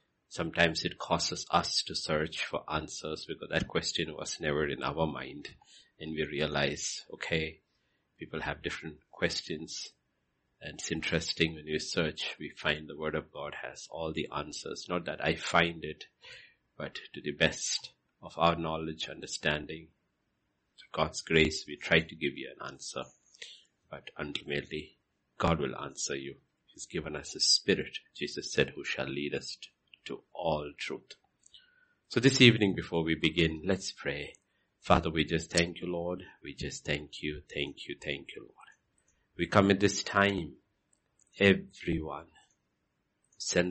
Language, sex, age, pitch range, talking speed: English, male, 60-79, 80-95 Hz, 155 wpm